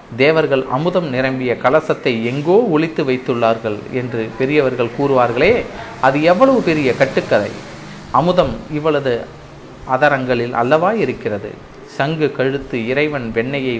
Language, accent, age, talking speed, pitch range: Tamil, native, 30-49, 100 wpm, 120-155 Hz